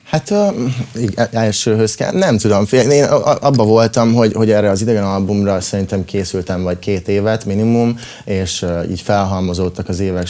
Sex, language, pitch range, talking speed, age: male, Hungarian, 90-105 Hz, 145 wpm, 20-39